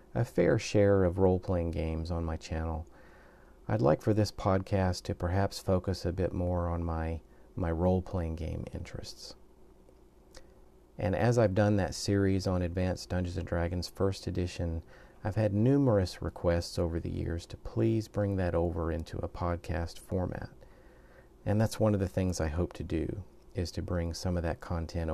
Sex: male